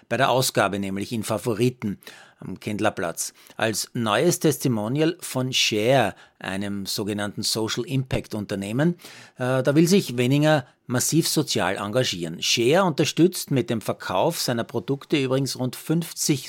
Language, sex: German, male